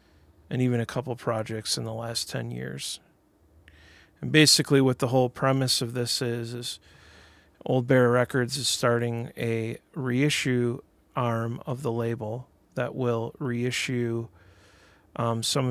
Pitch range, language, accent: 115-130 Hz, English, American